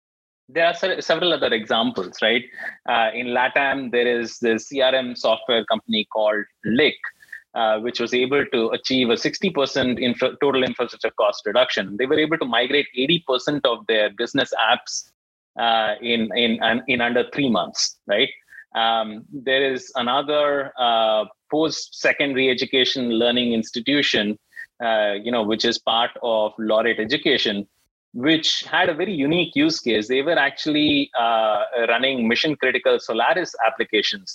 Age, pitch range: 30-49, 115-145 Hz